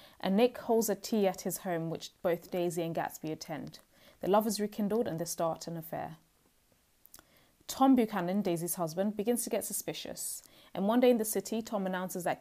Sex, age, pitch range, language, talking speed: female, 20-39, 170-205 Hz, English, 195 wpm